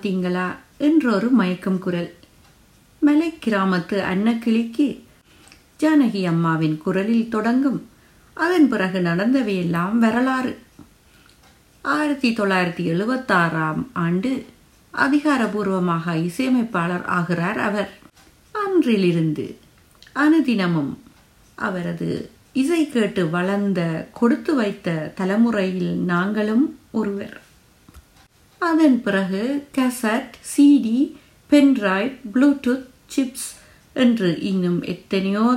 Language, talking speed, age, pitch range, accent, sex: Tamil, 65 wpm, 50-69, 180-255 Hz, native, female